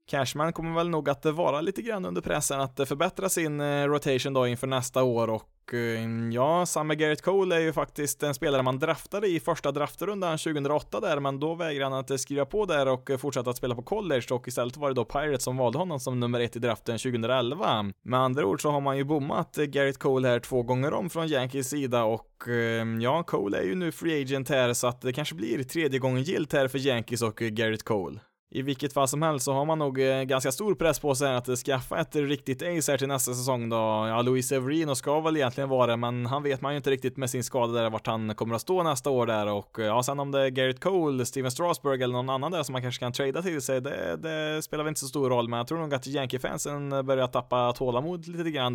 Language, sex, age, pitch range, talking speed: Swedish, male, 20-39, 125-150 Hz, 240 wpm